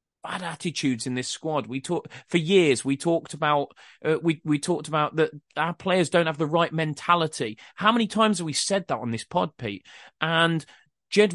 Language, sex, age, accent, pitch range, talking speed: English, male, 30-49, British, 140-180 Hz, 205 wpm